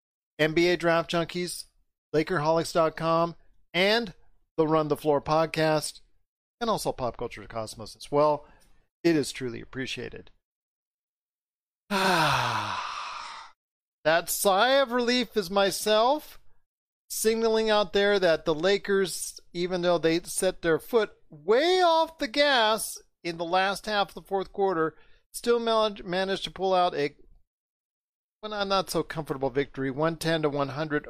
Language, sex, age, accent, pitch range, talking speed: English, male, 40-59, American, 150-195 Hz, 125 wpm